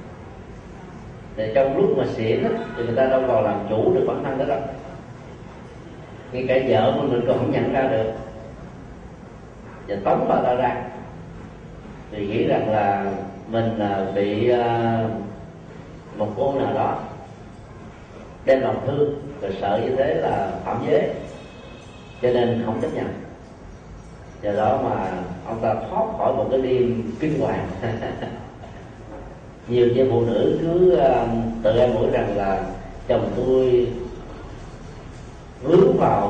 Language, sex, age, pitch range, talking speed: Vietnamese, male, 30-49, 105-135 Hz, 135 wpm